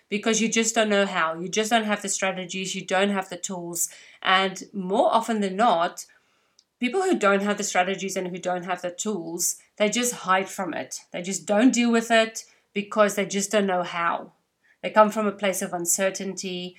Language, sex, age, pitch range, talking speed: English, female, 30-49, 185-225 Hz, 205 wpm